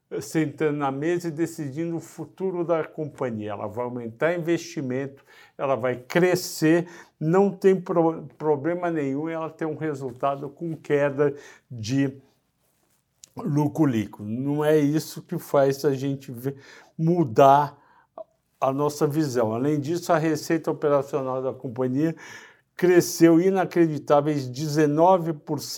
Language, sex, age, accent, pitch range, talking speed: Portuguese, male, 60-79, Brazilian, 135-165 Hz, 115 wpm